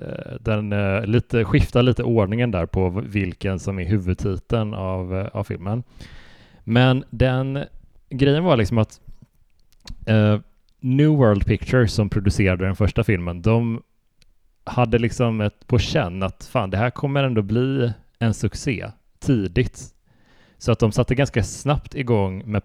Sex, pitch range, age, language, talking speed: male, 100-120 Hz, 30-49, Swedish, 130 wpm